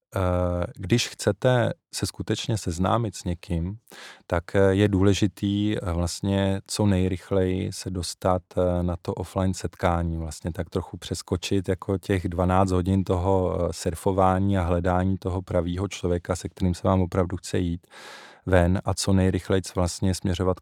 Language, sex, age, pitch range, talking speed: Czech, male, 20-39, 90-105 Hz, 140 wpm